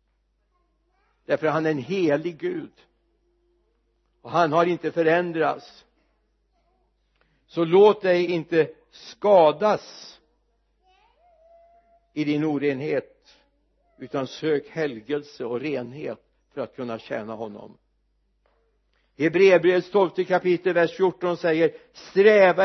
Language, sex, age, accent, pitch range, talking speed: Swedish, male, 60-79, native, 160-205 Hz, 95 wpm